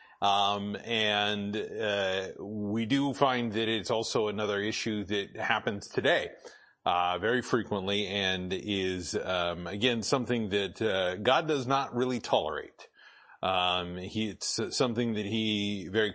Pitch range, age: 100-120 Hz, 30-49